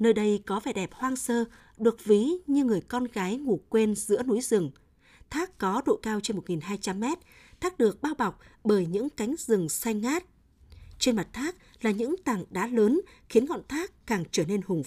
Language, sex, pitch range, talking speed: Vietnamese, female, 195-260 Hz, 200 wpm